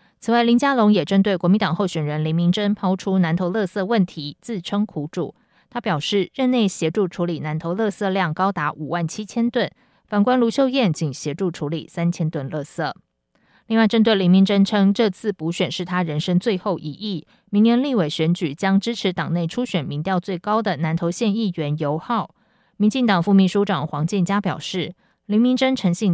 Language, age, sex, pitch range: Chinese, 20-39, female, 165-215 Hz